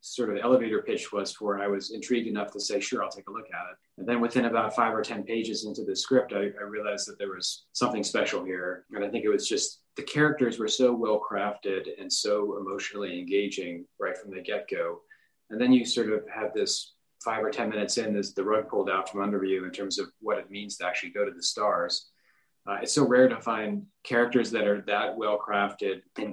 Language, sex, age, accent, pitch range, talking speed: English, male, 30-49, American, 100-120 Hz, 235 wpm